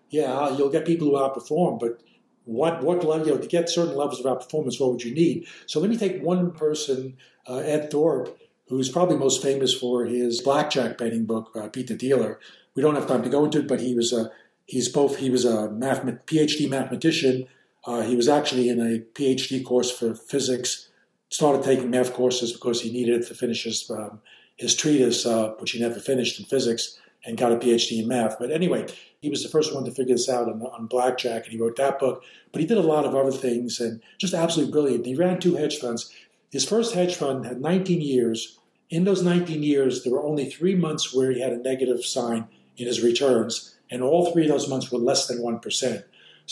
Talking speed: 220 wpm